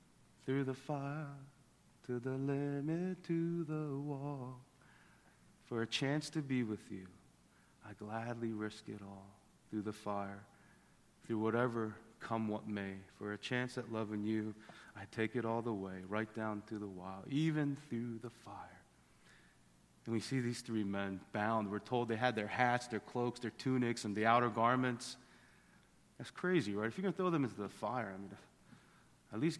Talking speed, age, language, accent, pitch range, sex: 175 wpm, 40-59, English, American, 105-140 Hz, male